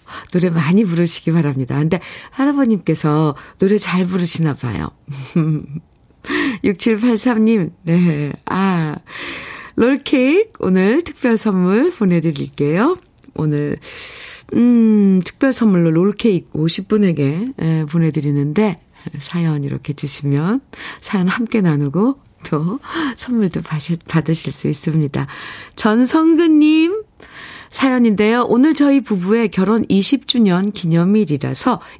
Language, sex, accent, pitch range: Korean, female, native, 155-235 Hz